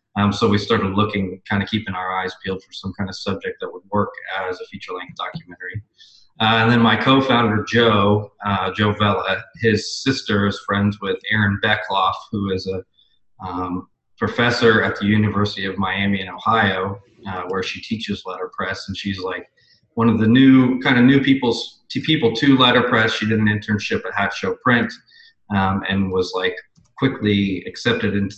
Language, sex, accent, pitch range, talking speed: English, male, American, 100-115 Hz, 180 wpm